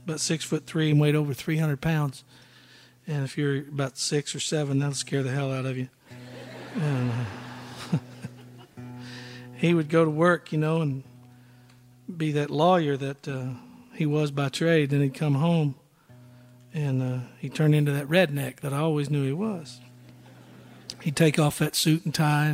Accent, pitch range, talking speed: American, 130-160 Hz, 175 wpm